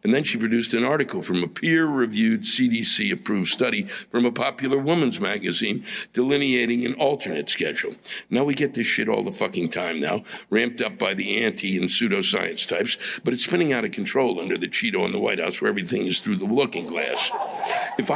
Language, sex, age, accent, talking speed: English, male, 60-79, American, 195 wpm